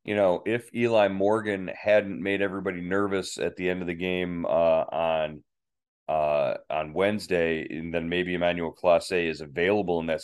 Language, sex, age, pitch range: English, male, 30-49, 80-95 Hz